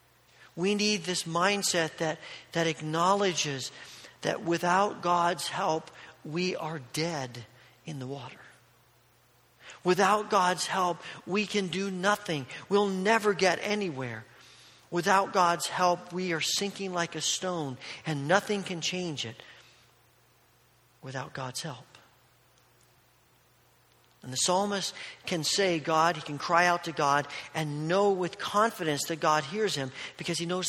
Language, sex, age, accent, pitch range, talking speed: English, male, 40-59, American, 155-195 Hz, 135 wpm